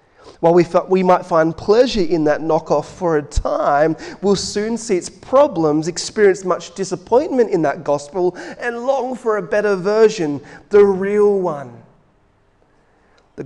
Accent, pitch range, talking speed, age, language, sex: Australian, 135-175 Hz, 145 wpm, 30-49, English, male